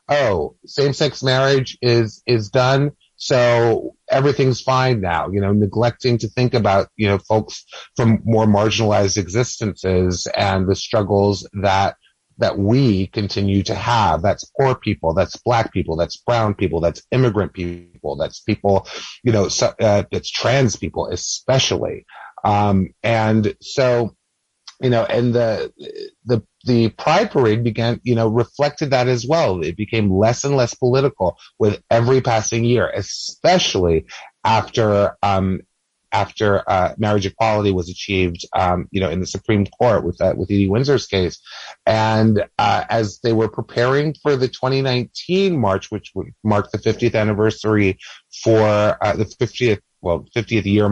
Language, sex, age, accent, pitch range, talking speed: English, male, 30-49, American, 100-125 Hz, 150 wpm